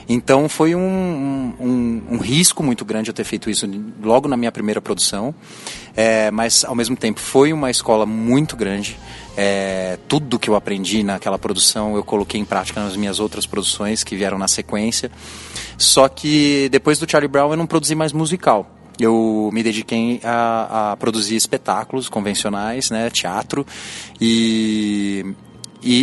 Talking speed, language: 150 wpm, Portuguese